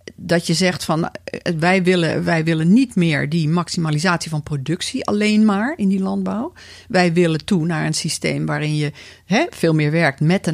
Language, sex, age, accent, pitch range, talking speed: Dutch, female, 50-69, Dutch, 160-215 Hz, 190 wpm